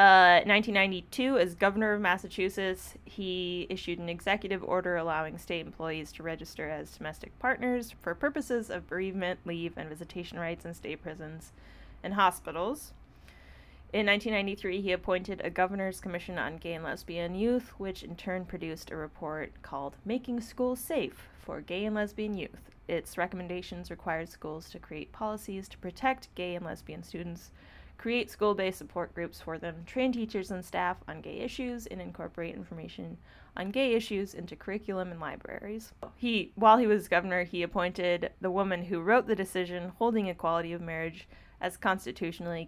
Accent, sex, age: American, female, 20-39